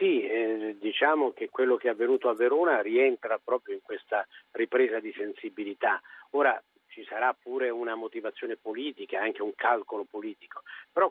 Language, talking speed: Italian, 155 wpm